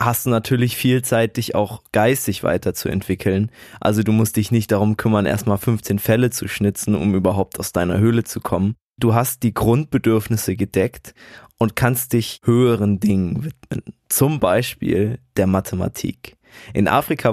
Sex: male